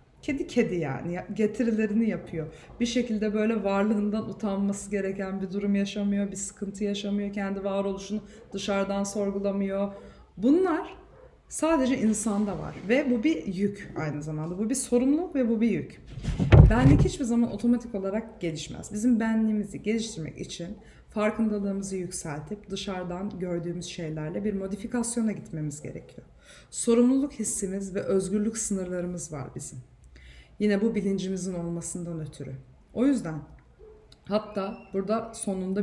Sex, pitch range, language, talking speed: female, 175-215 Hz, Turkish, 125 wpm